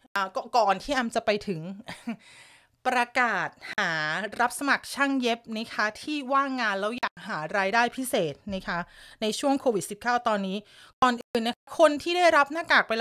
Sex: female